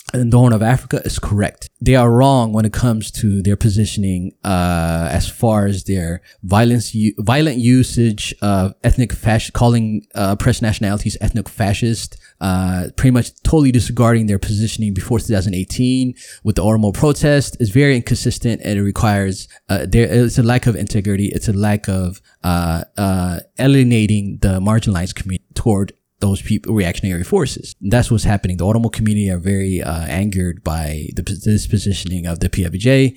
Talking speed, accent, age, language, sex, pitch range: 170 wpm, American, 20-39, English, male, 95-115 Hz